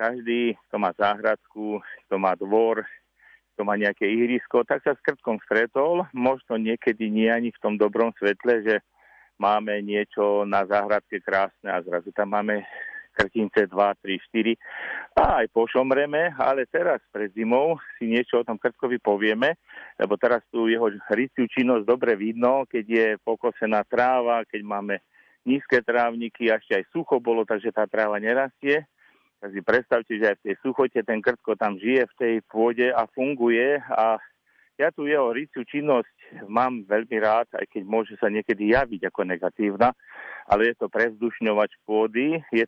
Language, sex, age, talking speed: Slovak, male, 50-69, 165 wpm